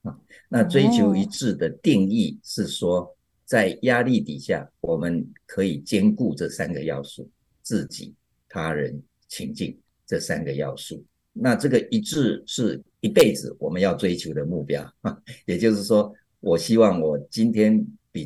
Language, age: Chinese, 50-69